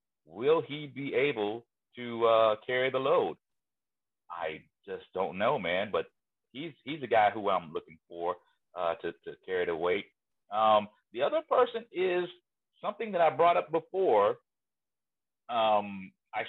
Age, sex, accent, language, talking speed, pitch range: 40-59, male, American, English, 155 wpm, 110-165 Hz